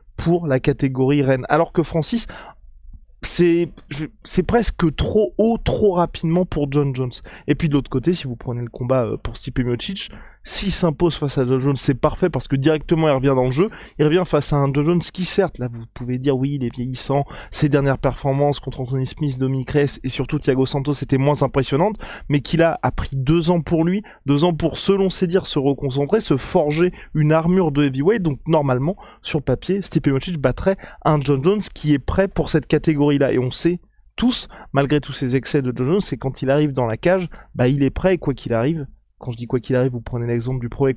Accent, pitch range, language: French, 135-175 Hz, French